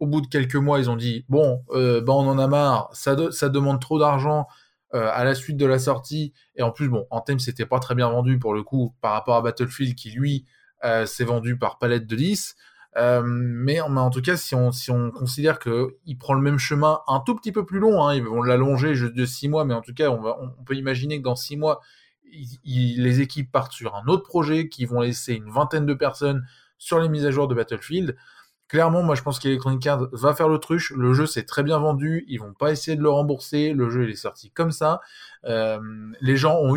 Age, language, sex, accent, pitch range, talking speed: 20-39, French, male, French, 125-155 Hz, 260 wpm